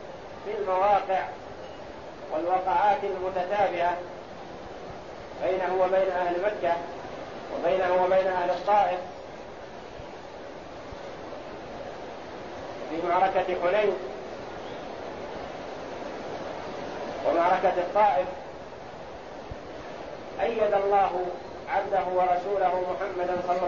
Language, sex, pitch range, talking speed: Arabic, male, 180-210 Hz, 60 wpm